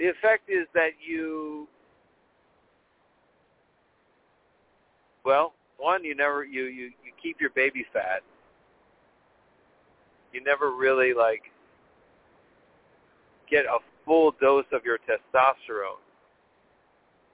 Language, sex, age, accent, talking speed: English, male, 40-59, American, 95 wpm